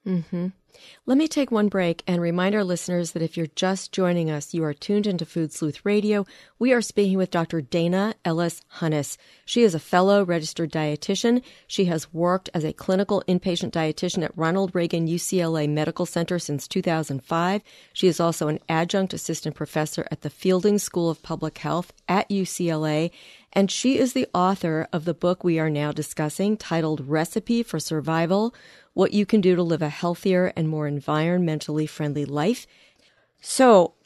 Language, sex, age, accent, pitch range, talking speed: English, female, 40-59, American, 160-200 Hz, 175 wpm